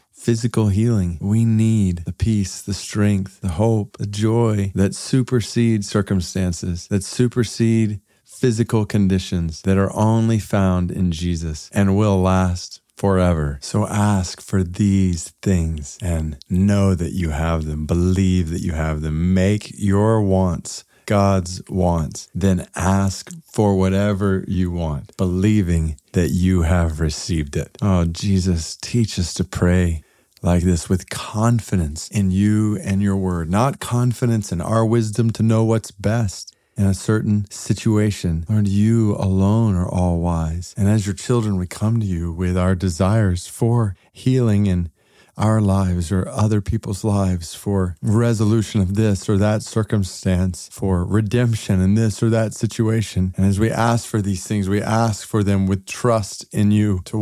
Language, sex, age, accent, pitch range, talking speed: English, male, 40-59, American, 90-110 Hz, 155 wpm